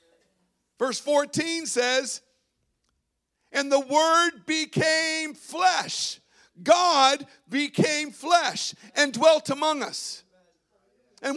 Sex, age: male, 50-69